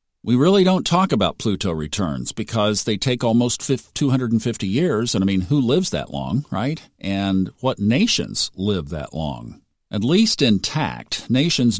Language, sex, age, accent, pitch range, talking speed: English, male, 50-69, American, 95-125 Hz, 160 wpm